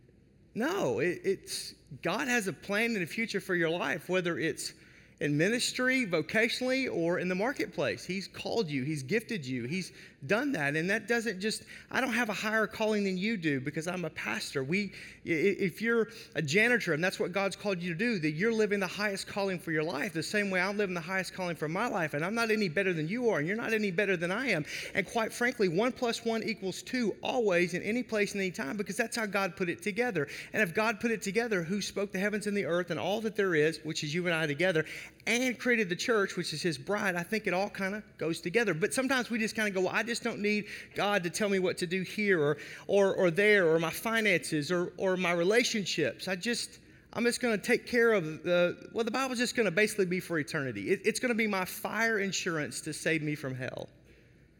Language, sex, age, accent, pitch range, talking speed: English, male, 30-49, American, 175-225 Hz, 245 wpm